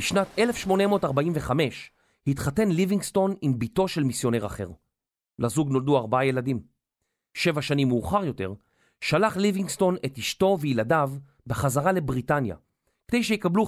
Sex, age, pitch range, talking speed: male, 40-59, 130-195 Hz, 115 wpm